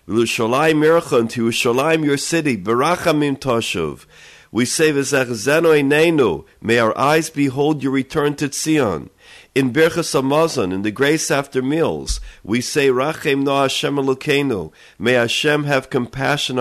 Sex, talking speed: male, 125 wpm